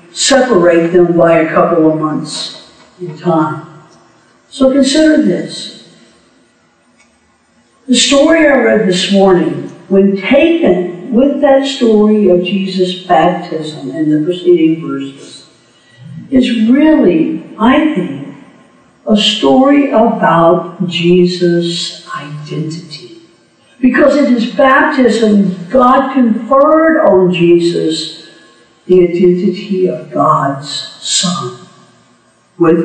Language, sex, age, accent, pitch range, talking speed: English, female, 60-79, American, 175-255 Hz, 100 wpm